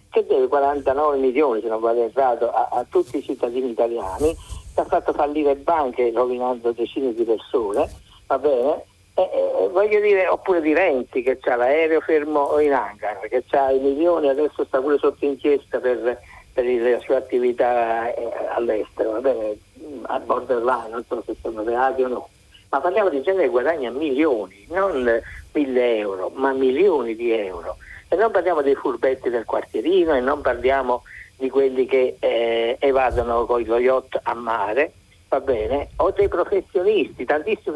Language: Italian